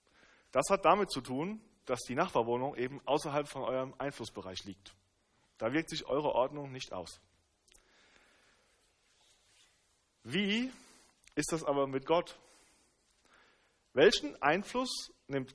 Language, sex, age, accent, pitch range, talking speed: German, male, 40-59, German, 105-165 Hz, 115 wpm